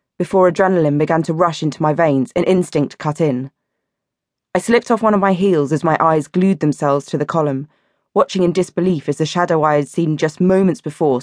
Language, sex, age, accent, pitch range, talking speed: English, female, 20-39, British, 155-185 Hz, 210 wpm